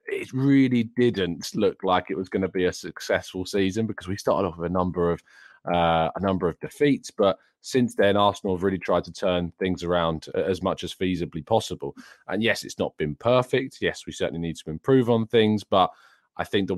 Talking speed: 215 wpm